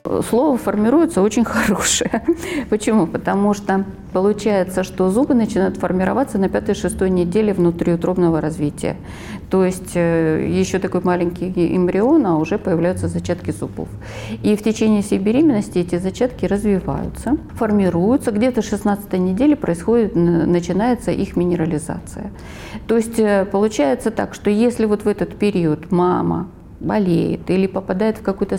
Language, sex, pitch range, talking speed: Russian, female, 175-230 Hz, 125 wpm